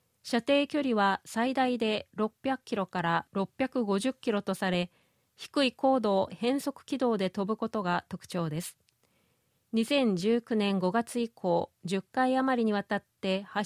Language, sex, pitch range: Japanese, female, 190-250 Hz